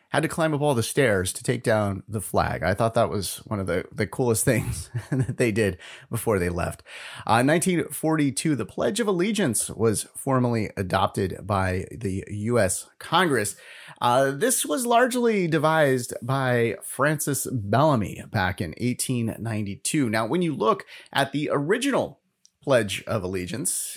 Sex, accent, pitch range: male, American, 100-145 Hz